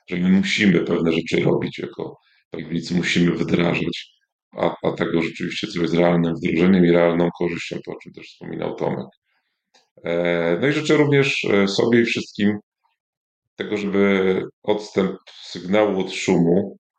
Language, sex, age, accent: Polish, male, 40-59, native